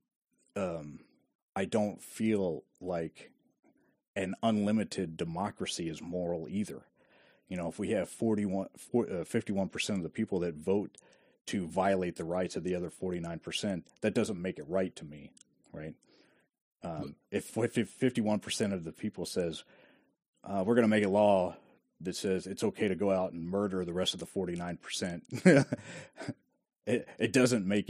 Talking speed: 160 wpm